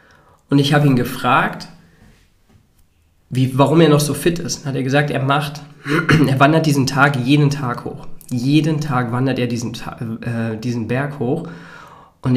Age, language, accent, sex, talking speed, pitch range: 20-39, German, German, male, 165 wpm, 115-145 Hz